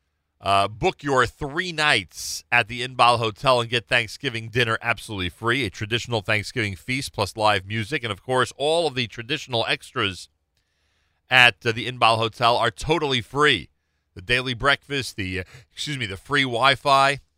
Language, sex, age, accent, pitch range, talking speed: English, male, 40-59, American, 95-140 Hz, 160 wpm